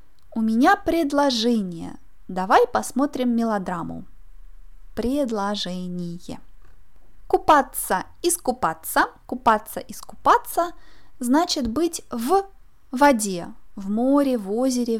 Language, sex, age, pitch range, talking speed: Russian, female, 20-39, 215-285 Hz, 75 wpm